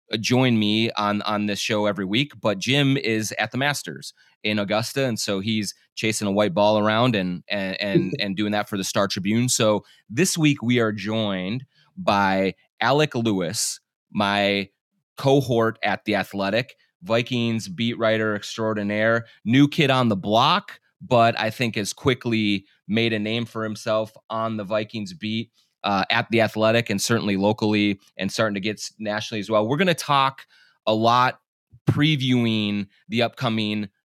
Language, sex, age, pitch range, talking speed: English, male, 30-49, 105-115 Hz, 165 wpm